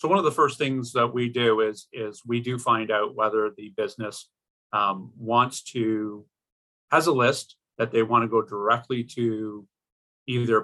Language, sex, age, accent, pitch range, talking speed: English, male, 40-59, American, 110-125 Hz, 175 wpm